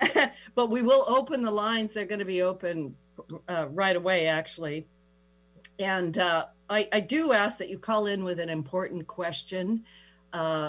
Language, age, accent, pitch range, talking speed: English, 50-69, American, 145-185 Hz, 170 wpm